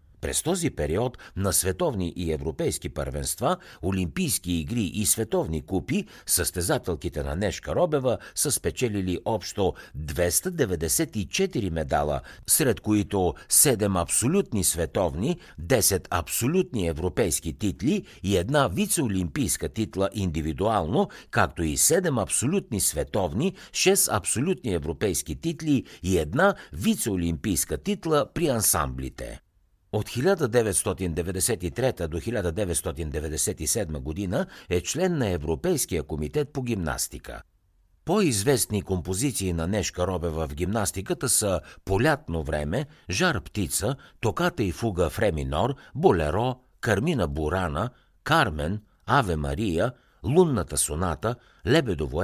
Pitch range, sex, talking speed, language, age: 85-125 Hz, male, 100 wpm, Bulgarian, 60-79